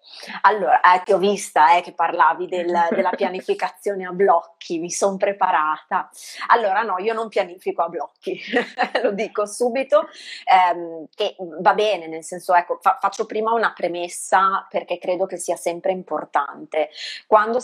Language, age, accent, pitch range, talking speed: Italian, 30-49, native, 175-210 Hz, 135 wpm